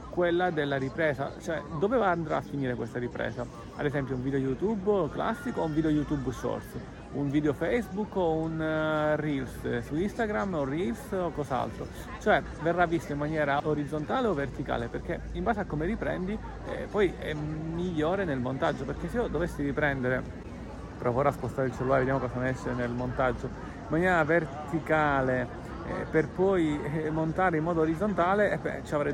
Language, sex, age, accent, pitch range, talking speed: Italian, male, 40-59, native, 130-155 Hz, 170 wpm